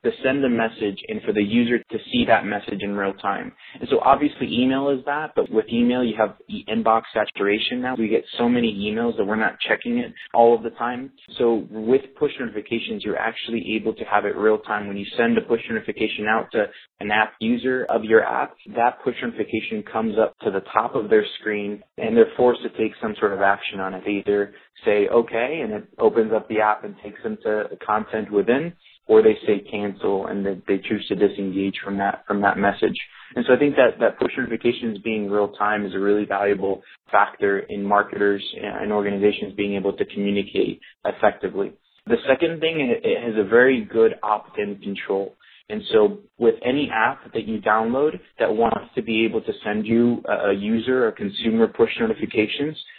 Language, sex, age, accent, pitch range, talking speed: English, male, 30-49, American, 105-130 Hz, 205 wpm